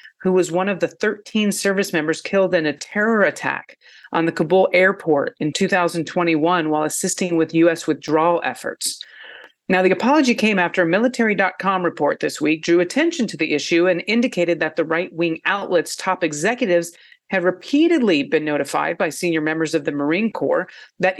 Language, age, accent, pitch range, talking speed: English, 40-59, American, 160-190 Hz, 175 wpm